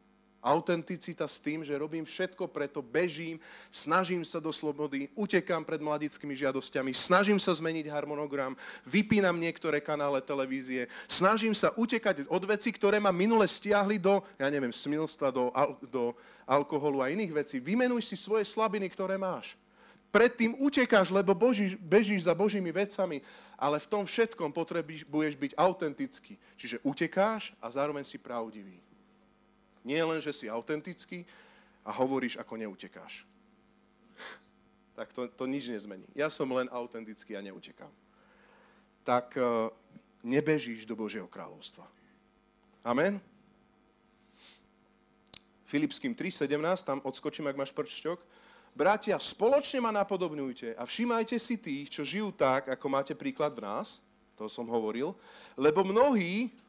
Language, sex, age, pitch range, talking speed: Slovak, male, 40-59, 135-205 Hz, 130 wpm